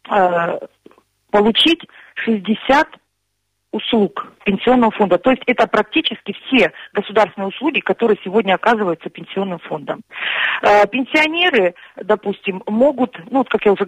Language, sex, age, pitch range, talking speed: Russian, female, 40-59, 185-240 Hz, 110 wpm